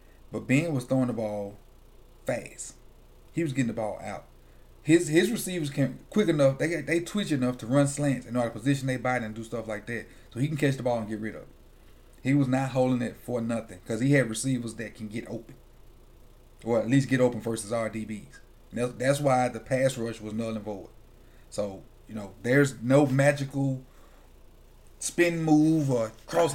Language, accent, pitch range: English, American, 115-140 Hz